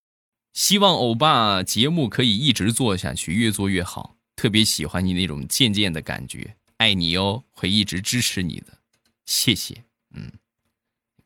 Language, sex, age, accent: Chinese, male, 20-39, native